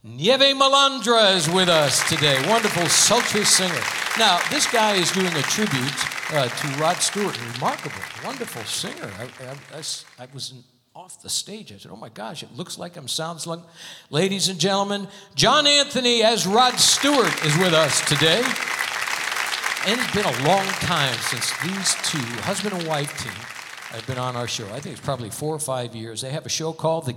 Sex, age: male, 60-79